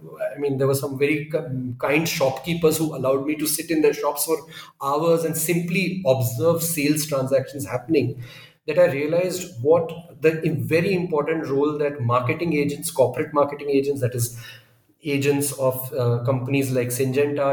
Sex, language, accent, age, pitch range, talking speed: male, English, Indian, 40-59, 130-170 Hz, 160 wpm